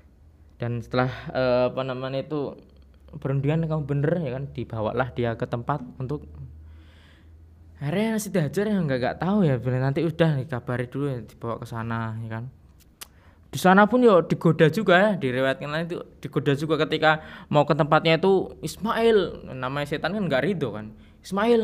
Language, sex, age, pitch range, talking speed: Indonesian, male, 20-39, 115-165 Hz, 145 wpm